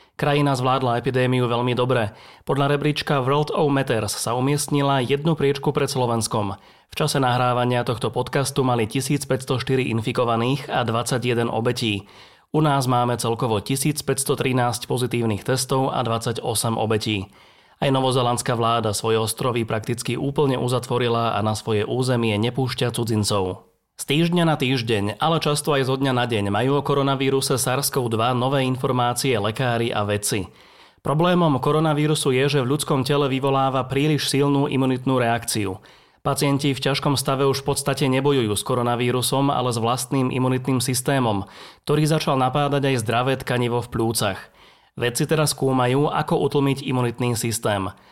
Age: 30-49